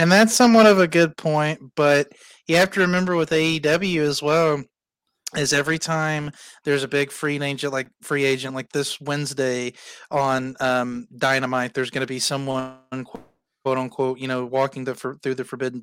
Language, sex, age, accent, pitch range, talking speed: English, male, 30-49, American, 130-145 Hz, 180 wpm